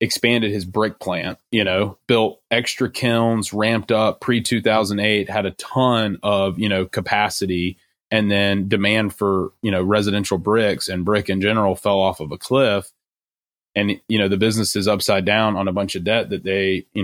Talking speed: 185 wpm